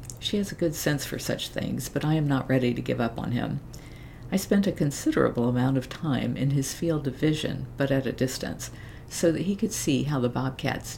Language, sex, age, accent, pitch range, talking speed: English, female, 50-69, American, 120-145 Hz, 230 wpm